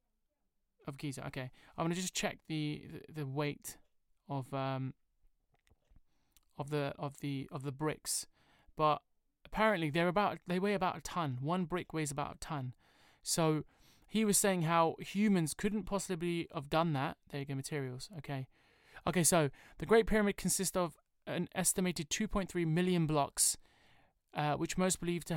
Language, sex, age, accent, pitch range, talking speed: English, male, 20-39, British, 145-180 Hz, 170 wpm